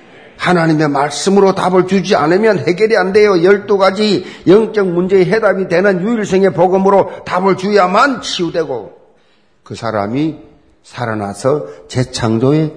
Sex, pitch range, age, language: male, 135-185 Hz, 50-69, Korean